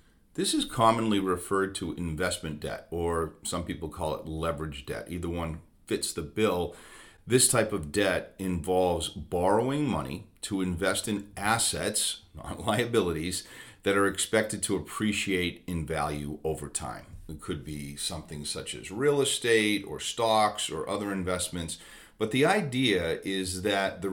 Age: 40-59